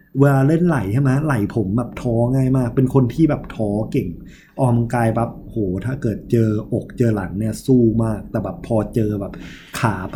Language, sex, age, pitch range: Thai, male, 20-39, 110-140 Hz